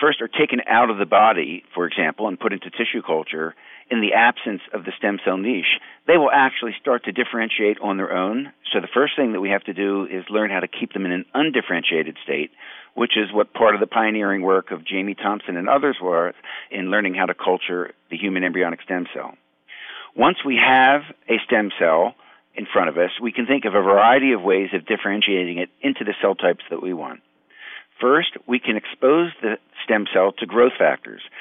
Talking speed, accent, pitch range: 215 wpm, American, 95-115 Hz